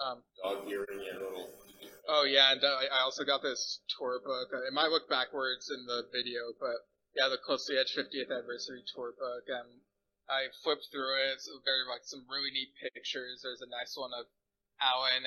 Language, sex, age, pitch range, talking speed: English, male, 20-39, 120-145 Hz, 180 wpm